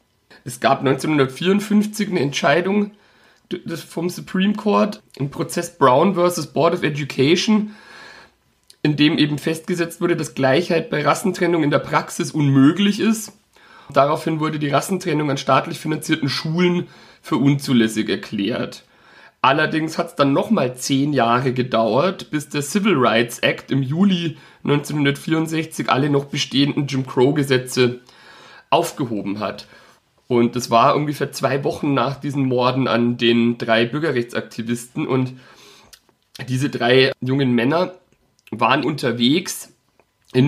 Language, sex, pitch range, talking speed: German, male, 130-170 Hz, 125 wpm